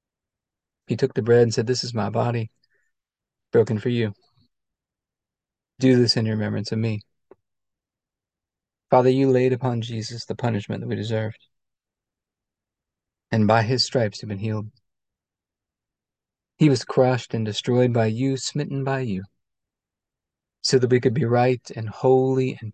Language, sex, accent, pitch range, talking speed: English, male, American, 105-125 Hz, 145 wpm